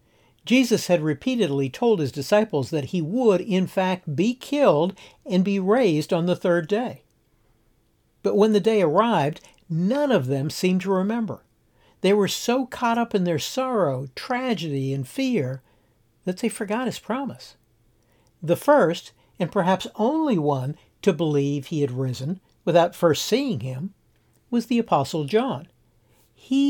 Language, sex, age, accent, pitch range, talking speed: English, male, 60-79, American, 135-210 Hz, 150 wpm